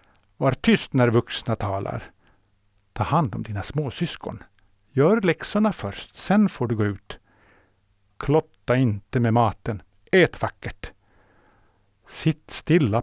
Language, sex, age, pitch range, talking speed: Swedish, male, 60-79, 100-130 Hz, 120 wpm